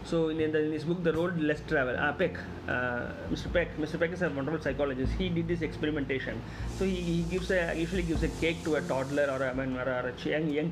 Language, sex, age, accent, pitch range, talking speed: Tamil, male, 30-49, native, 140-175 Hz, 250 wpm